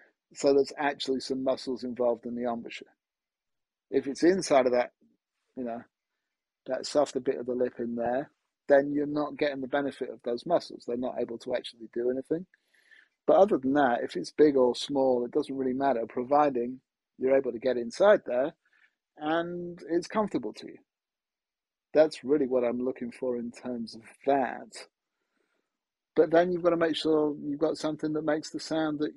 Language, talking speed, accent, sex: English, 185 wpm, British, male